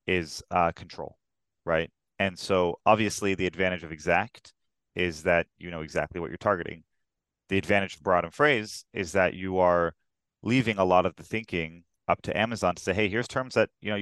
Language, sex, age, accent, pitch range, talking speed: English, male, 30-49, American, 85-105 Hz, 195 wpm